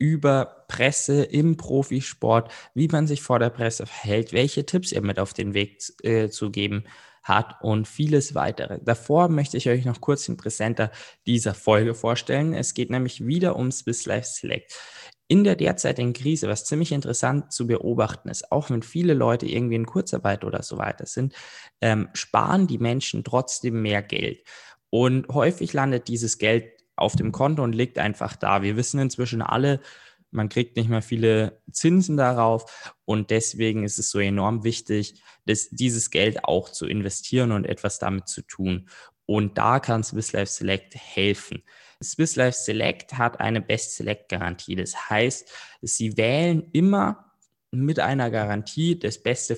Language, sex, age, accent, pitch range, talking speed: German, male, 20-39, German, 110-140 Hz, 165 wpm